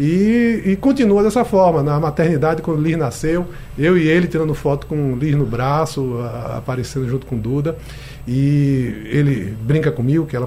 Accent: Brazilian